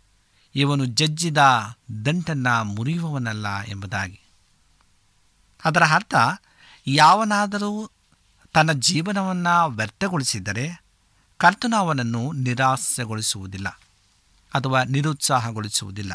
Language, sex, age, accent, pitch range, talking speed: Kannada, male, 50-69, native, 100-145 Hz, 60 wpm